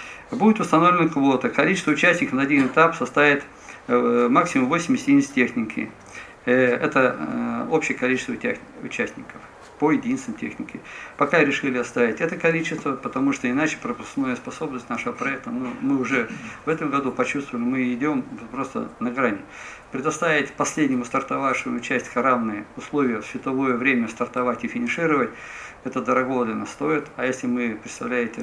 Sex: male